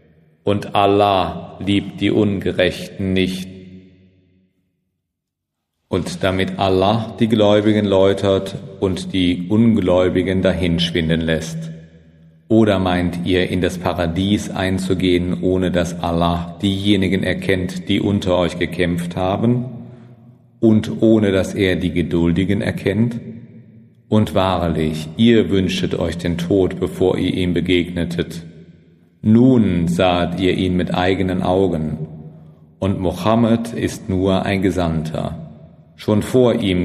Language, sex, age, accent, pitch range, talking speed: German, male, 40-59, German, 85-105 Hz, 110 wpm